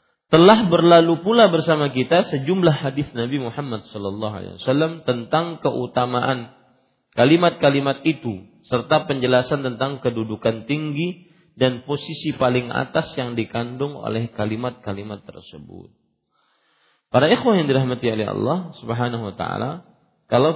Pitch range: 115-165 Hz